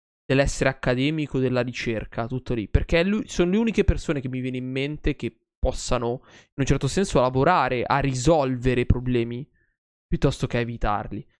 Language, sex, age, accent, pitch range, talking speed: Italian, male, 20-39, native, 125-165 Hz, 155 wpm